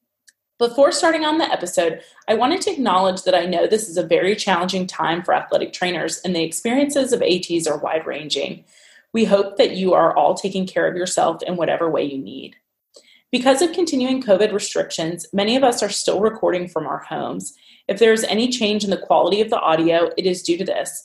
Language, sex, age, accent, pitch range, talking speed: English, female, 20-39, American, 175-235 Hz, 210 wpm